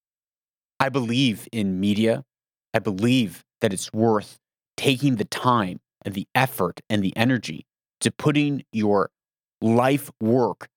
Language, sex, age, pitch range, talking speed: English, male, 30-49, 110-140 Hz, 130 wpm